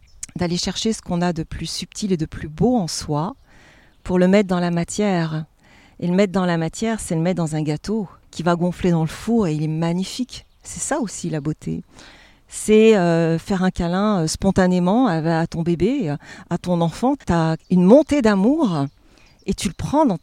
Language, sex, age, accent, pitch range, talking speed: French, female, 40-59, French, 155-200 Hz, 205 wpm